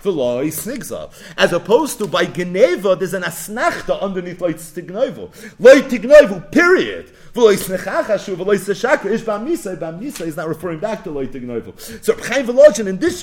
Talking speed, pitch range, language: 165 wpm, 180-260 Hz, English